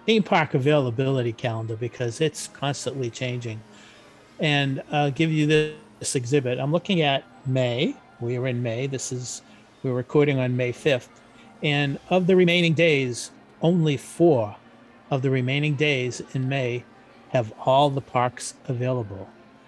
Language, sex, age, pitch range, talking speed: English, male, 40-59, 125-155 Hz, 145 wpm